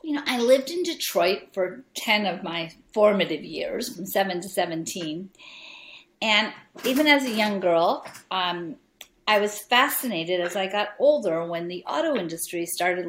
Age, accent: 50-69, American